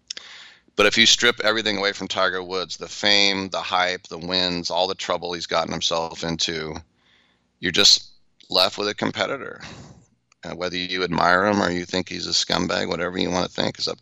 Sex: male